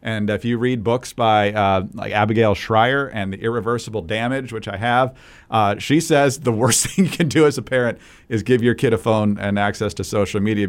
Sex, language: male, English